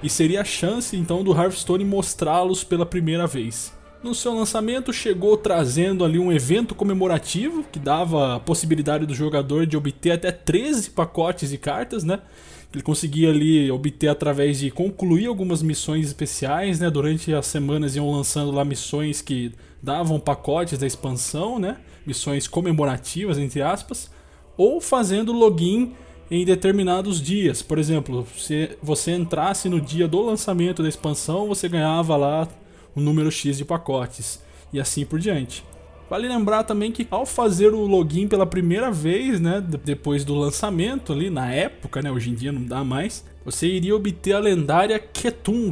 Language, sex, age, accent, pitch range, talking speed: Portuguese, male, 20-39, Brazilian, 145-190 Hz, 160 wpm